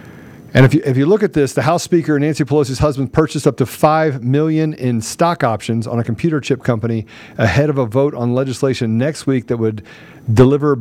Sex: male